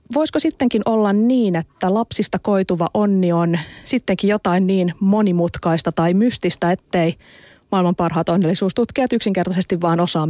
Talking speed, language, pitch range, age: 130 wpm, Finnish, 170-215 Hz, 30-49